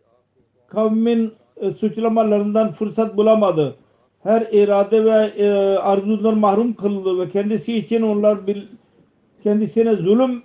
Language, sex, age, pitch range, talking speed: Turkish, male, 50-69, 185-215 Hz, 110 wpm